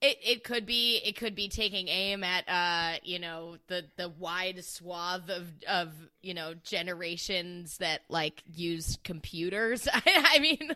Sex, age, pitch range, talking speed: female, 20-39, 175-245 Hz, 155 wpm